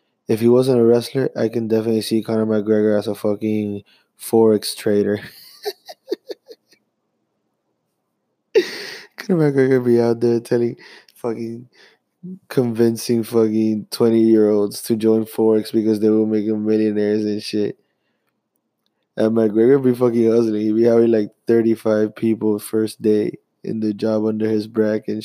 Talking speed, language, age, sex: 140 wpm, English, 20-39, male